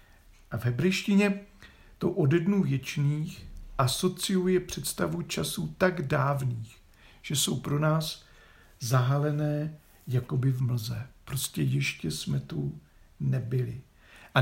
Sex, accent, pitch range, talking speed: male, native, 110-155 Hz, 110 wpm